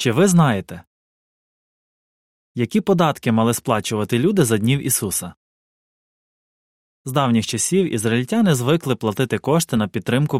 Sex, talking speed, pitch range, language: male, 115 wpm, 110-150 Hz, Ukrainian